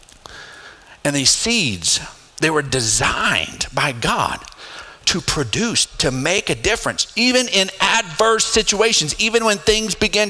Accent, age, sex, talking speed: American, 40-59, male, 130 wpm